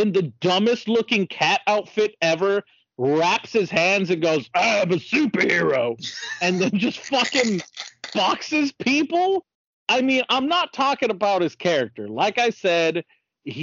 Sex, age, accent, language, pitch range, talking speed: male, 40-59, American, English, 130-200 Hz, 140 wpm